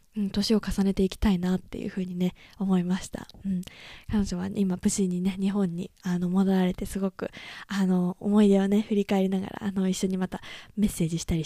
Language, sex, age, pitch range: Japanese, female, 20-39, 190-215 Hz